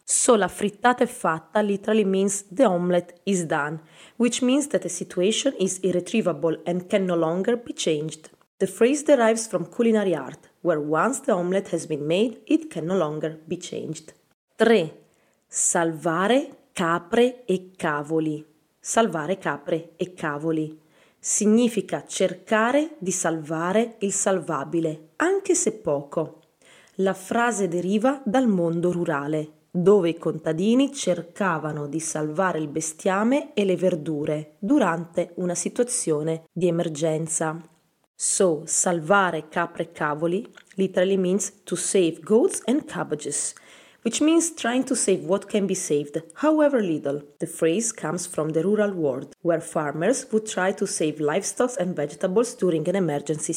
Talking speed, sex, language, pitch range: 140 wpm, female, English, 160-220 Hz